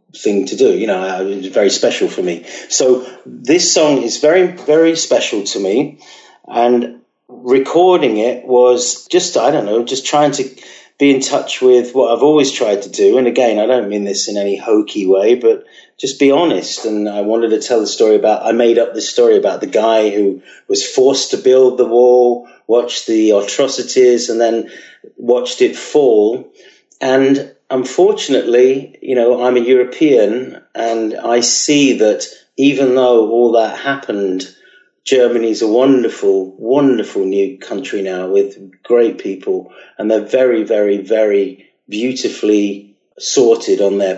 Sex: male